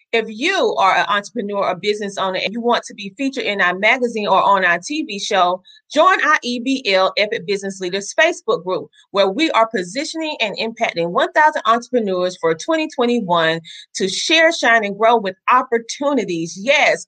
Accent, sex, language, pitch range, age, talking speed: American, female, English, 180-250 Hz, 30-49, 170 wpm